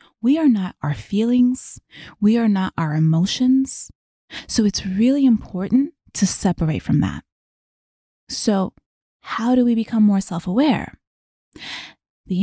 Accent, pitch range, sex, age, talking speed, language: American, 180-230 Hz, female, 20-39, 125 wpm, English